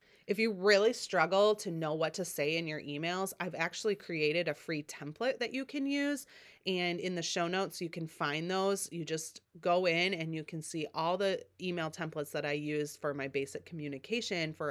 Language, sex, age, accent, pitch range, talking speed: English, female, 30-49, American, 150-200 Hz, 210 wpm